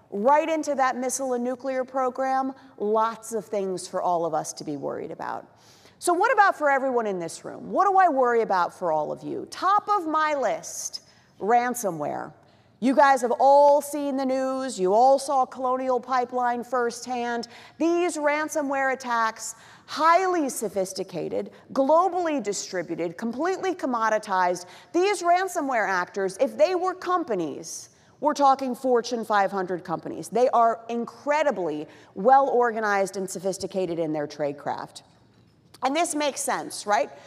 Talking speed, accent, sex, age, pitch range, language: 140 wpm, American, female, 40-59, 215-300 Hz, English